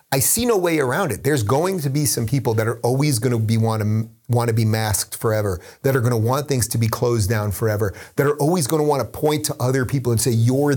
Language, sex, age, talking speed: English, male, 30-49, 280 wpm